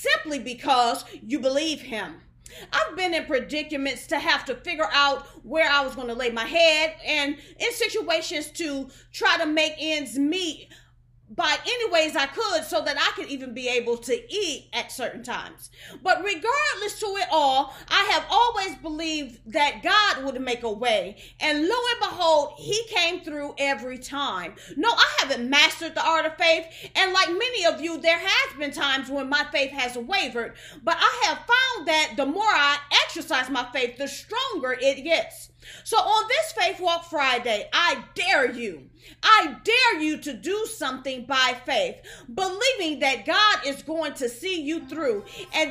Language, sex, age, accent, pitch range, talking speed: English, female, 40-59, American, 280-370 Hz, 175 wpm